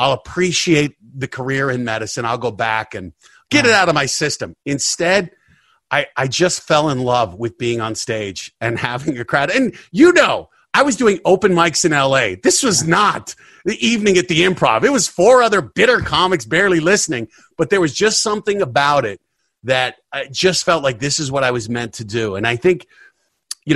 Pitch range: 125-180 Hz